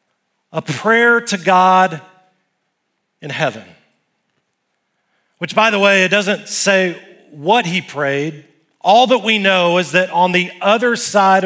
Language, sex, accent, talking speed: English, male, American, 135 wpm